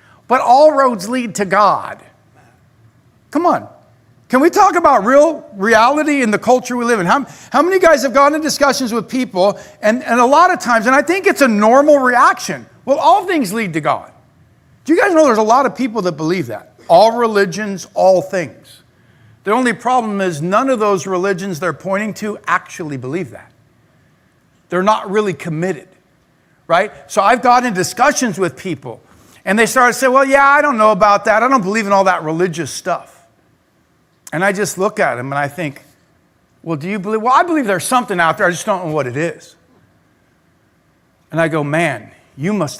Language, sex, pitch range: English, male, 150-250 Hz